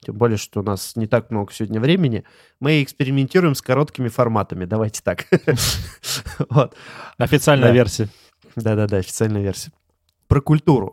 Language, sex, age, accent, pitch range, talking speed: Russian, male, 20-39, native, 110-140 Hz, 130 wpm